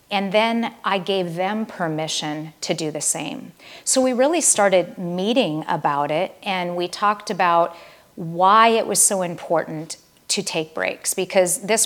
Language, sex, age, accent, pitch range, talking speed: English, female, 40-59, American, 165-210 Hz, 155 wpm